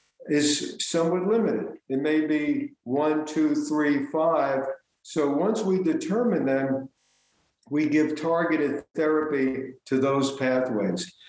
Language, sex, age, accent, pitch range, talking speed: English, male, 60-79, American, 130-165 Hz, 115 wpm